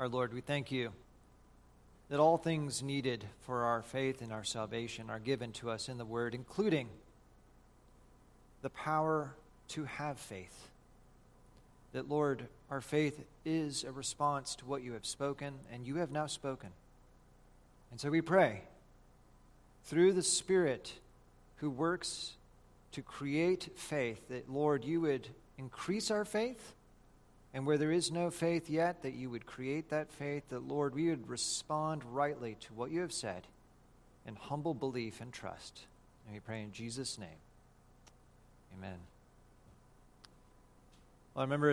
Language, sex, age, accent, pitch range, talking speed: English, male, 40-59, American, 120-155 Hz, 150 wpm